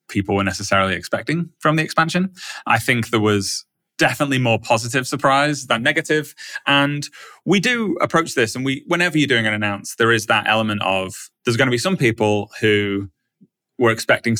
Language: English